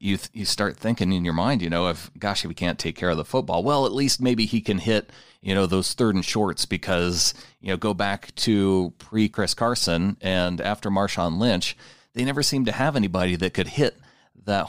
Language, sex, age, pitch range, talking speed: English, male, 40-59, 90-110 Hz, 225 wpm